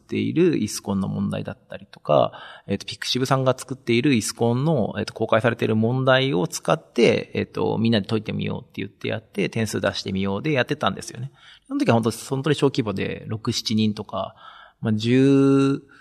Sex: male